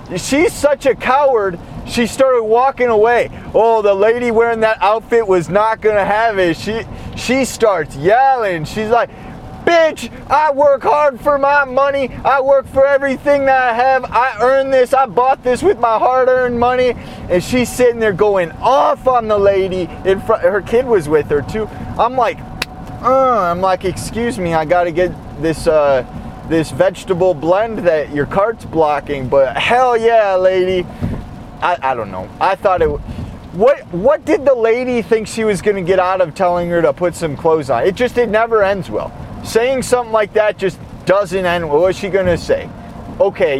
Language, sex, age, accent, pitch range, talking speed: English, male, 20-39, American, 170-245 Hz, 185 wpm